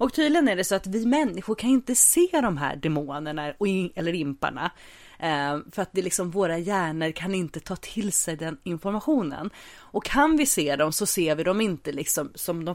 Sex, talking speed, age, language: female, 180 wpm, 30-49, English